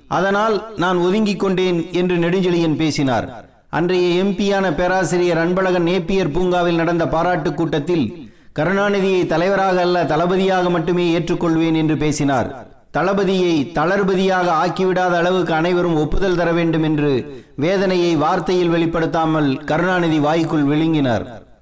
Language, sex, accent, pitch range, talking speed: Tamil, male, native, 165-190 Hz, 110 wpm